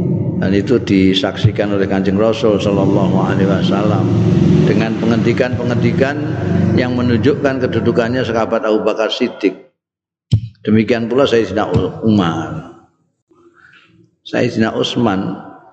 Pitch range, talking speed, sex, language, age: 100-140 Hz, 90 wpm, male, Indonesian, 50-69